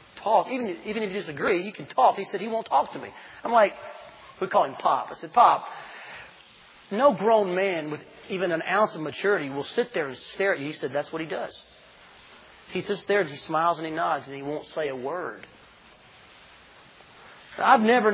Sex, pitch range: male, 160-225 Hz